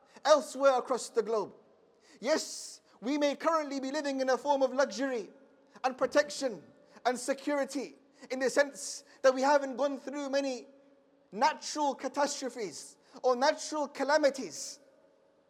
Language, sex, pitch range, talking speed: English, male, 215-280 Hz, 130 wpm